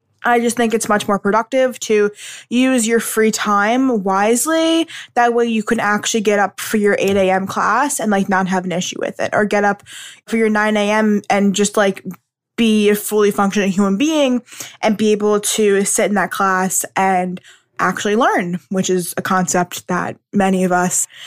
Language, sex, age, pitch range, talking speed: English, female, 10-29, 200-245 Hz, 190 wpm